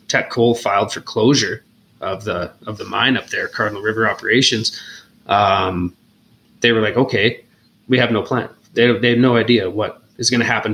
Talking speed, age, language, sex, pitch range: 190 wpm, 20-39, English, male, 110-120 Hz